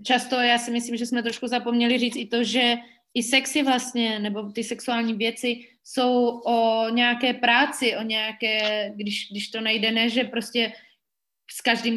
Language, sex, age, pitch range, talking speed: Slovak, female, 20-39, 205-245 Hz, 170 wpm